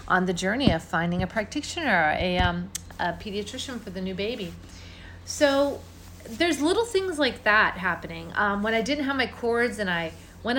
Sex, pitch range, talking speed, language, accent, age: female, 180-245 Hz, 180 wpm, English, American, 40-59